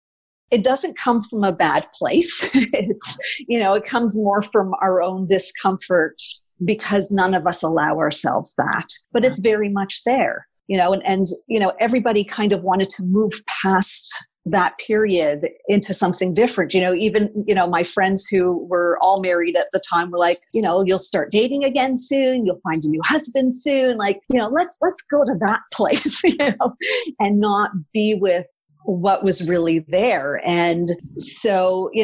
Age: 50-69